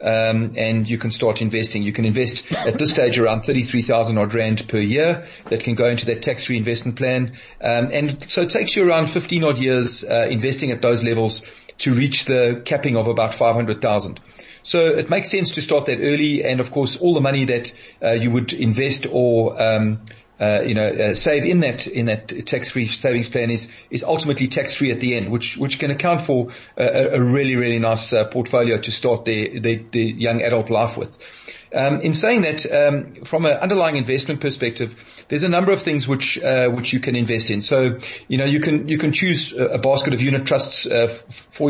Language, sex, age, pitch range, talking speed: English, male, 40-59, 115-145 Hz, 205 wpm